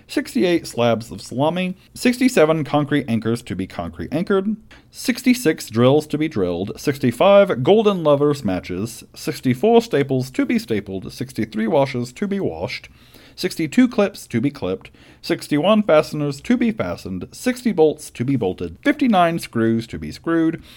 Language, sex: English, male